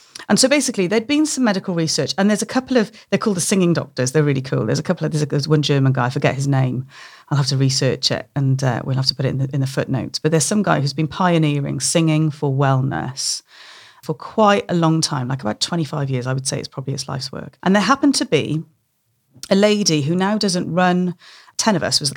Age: 40-59